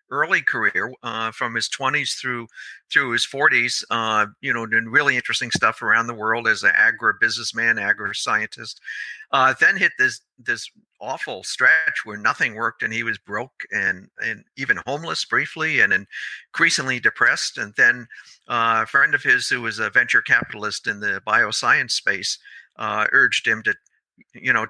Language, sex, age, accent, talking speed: English, male, 50-69, American, 170 wpm